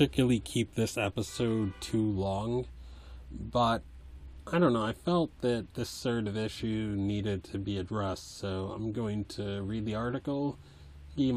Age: 30-49